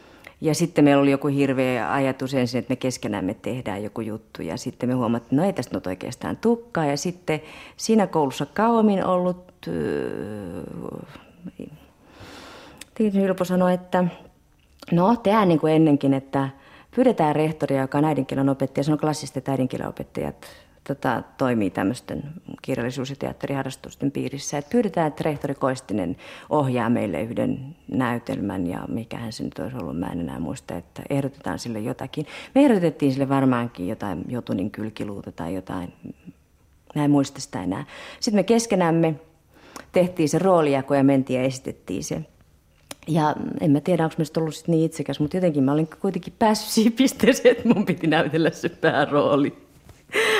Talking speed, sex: 150 wpm, female